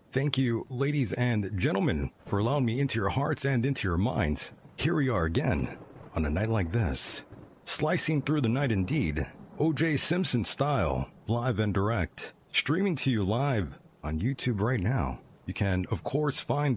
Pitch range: 100-135 Hz